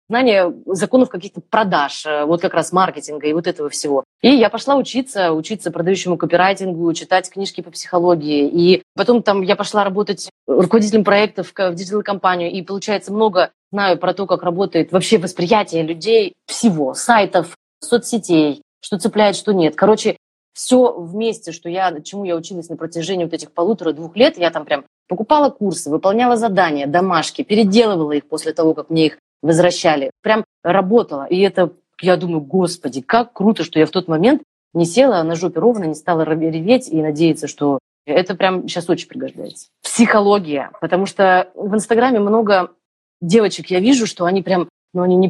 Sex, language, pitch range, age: female, Russian, 165-210 Hz, 20-39